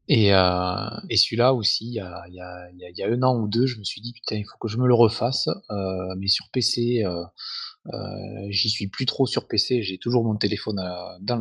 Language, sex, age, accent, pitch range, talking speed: French, male, 20-39, French, 95-115 Hz, 215 wpm